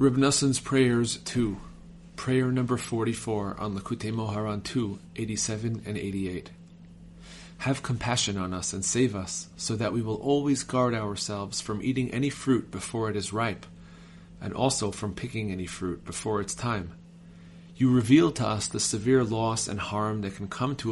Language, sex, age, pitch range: English, male, 40-59, 95-125 Hz